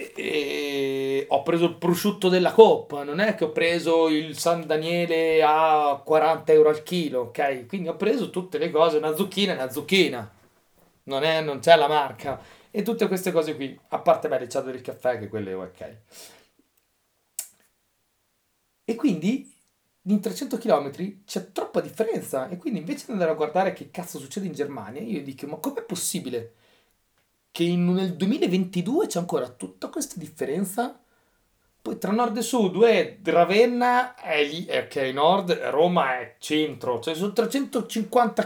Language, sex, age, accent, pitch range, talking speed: Italian, male, 30-49, native, 145-210 Hz, 165 wpm